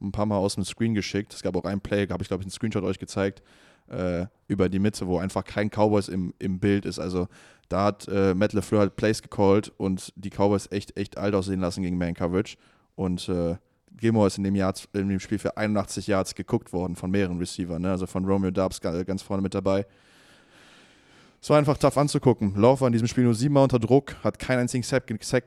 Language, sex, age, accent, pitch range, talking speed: German, male, 20-39, German, 95-105 Hz, 220 wpm